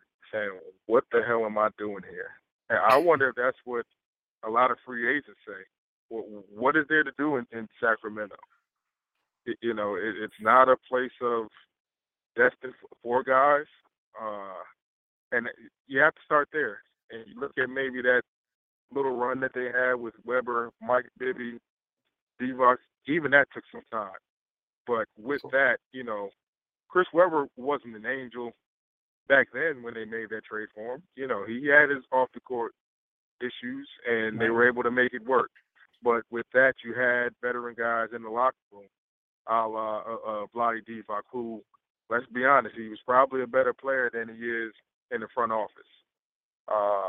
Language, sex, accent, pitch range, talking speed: English, male, American, 110-130 Hz, 175 wpm